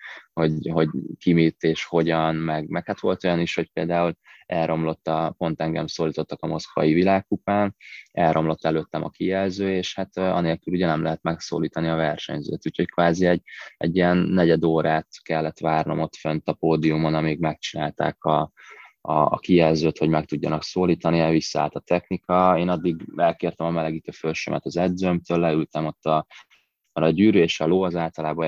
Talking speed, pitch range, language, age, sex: 170 wpm, 80-90 Hz, Hungarian, 20-39, male